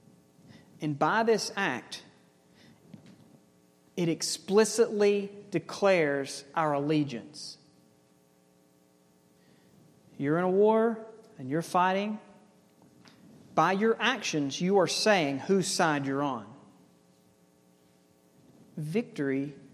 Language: English